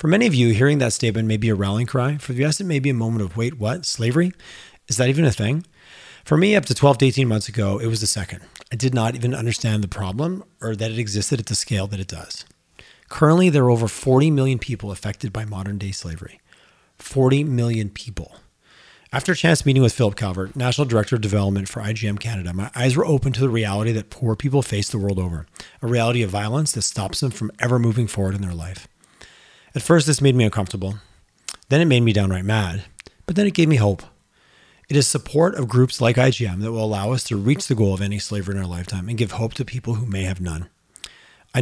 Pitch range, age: 105-135 Hz, 30-49